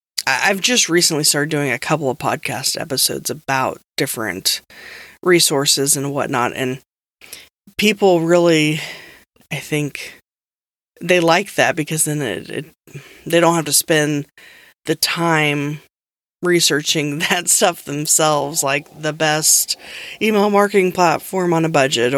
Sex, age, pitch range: female, 20-39, 145-175 Hz